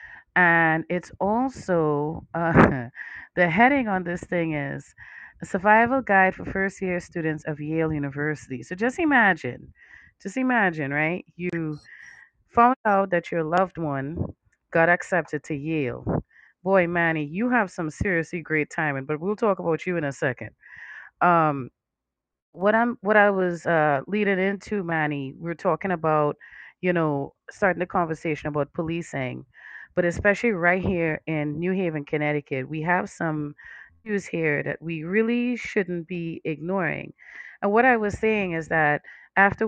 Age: 30-49